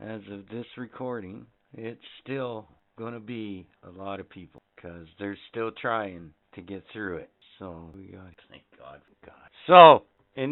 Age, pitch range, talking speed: 60-79, 90-125 Hz, 170 wpm